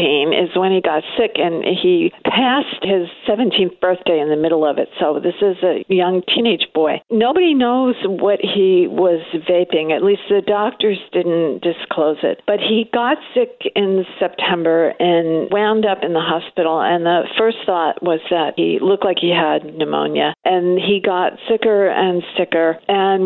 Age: 50-69